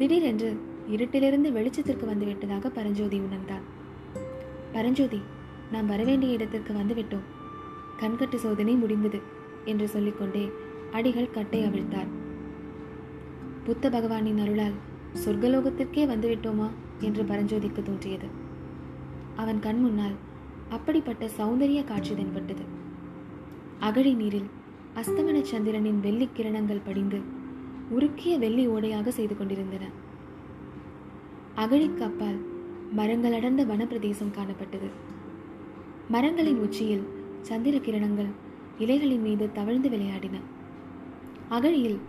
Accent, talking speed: native, 80 wpm